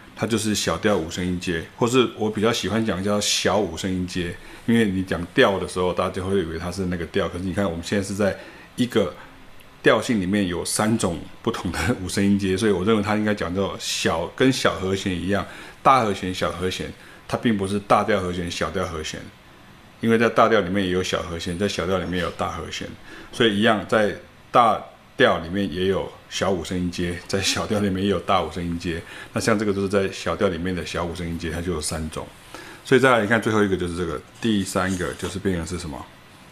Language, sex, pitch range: Chinese, male, 90-105 Hz